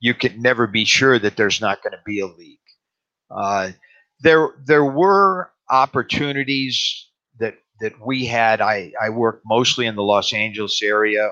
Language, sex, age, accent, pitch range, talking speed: English, male, 50-69, American, 105-130 Hz, 165 wpm